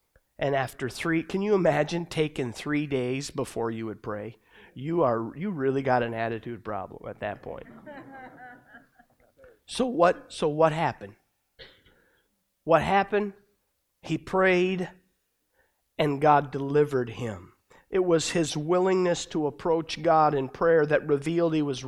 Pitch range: 160-230 Hz